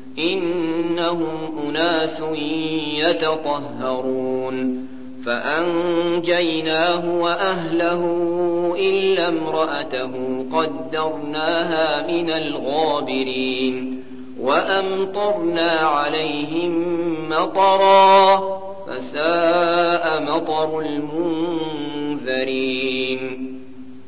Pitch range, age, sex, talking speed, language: 130-170 Hz, 50-69, male, 40 wpm, Arabic